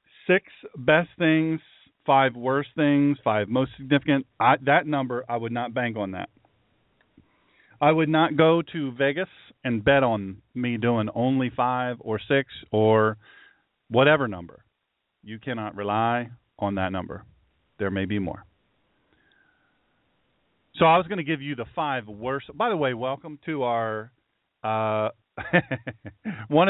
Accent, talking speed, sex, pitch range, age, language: American, 145 wpm, male, 110-140 Hz, 40-59, English